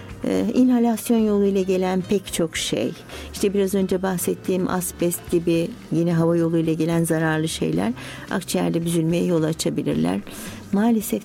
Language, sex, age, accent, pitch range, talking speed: Turkish, female, 60-79, native, 165-200 Hz, 125 wpm